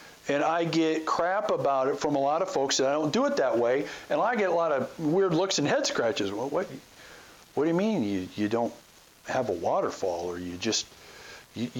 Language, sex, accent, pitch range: English, male, American, 190-255 Hz